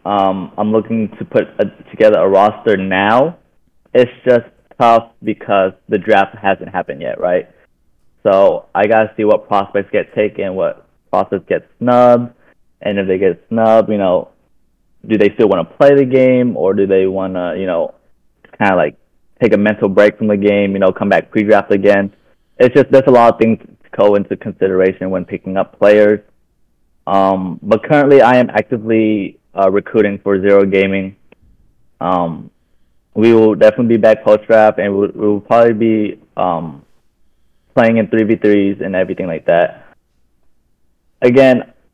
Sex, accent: male, American